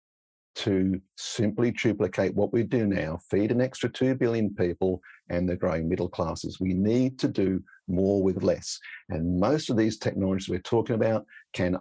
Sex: male